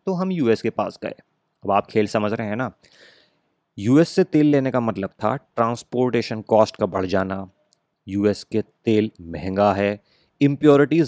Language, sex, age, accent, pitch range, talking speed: Hindi, male, 30-49, native, 95-130 Hz, 170 wpm